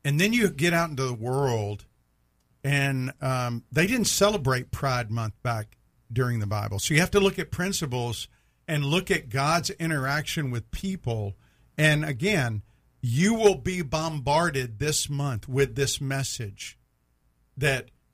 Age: 50-69